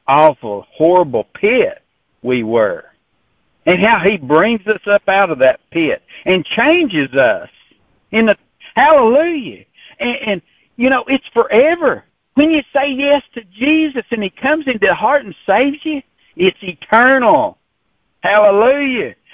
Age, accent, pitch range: 60-79, American, 175-265 Hz